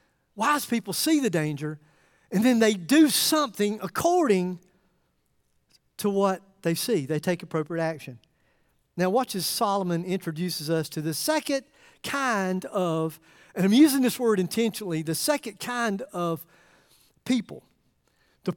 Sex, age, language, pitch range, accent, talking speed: male, 50-69, English, 180-275 Hz, American, 135 wpm